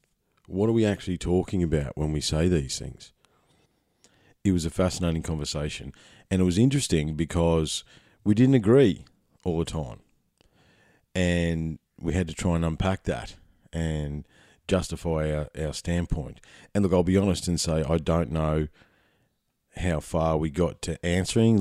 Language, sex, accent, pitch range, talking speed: English, male, Australian, 80-95 Hz, 155 wpm